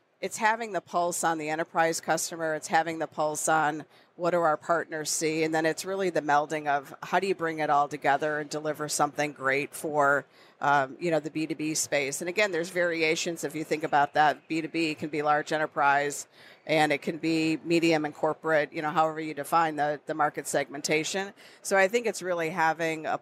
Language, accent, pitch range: English, American, 150-170 Hz